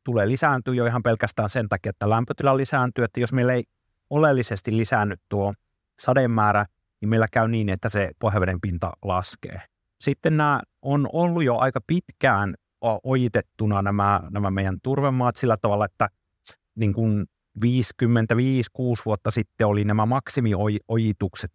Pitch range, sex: 105-135 Hz, male